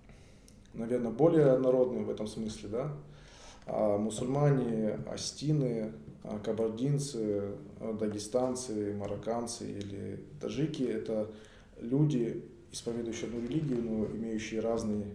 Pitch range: 105-125 Hz